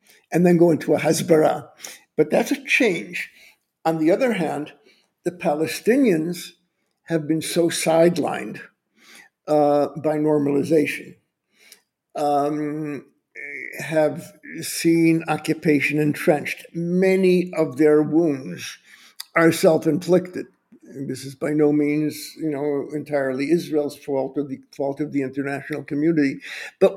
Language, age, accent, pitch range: English, 60-79, American, 155-200 Hz